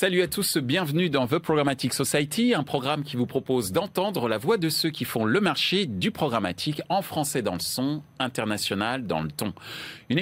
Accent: French